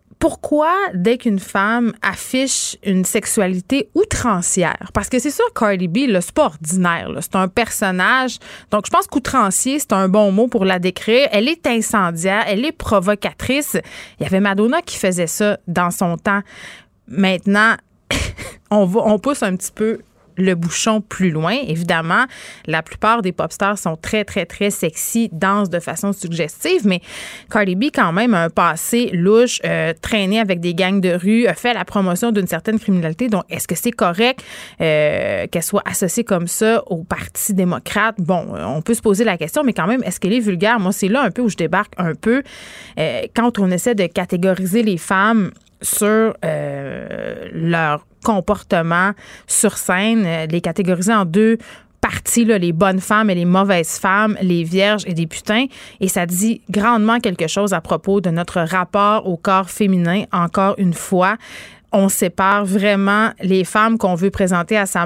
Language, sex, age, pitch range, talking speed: French, female, 30-49, 185-230 Hz, 180 wpm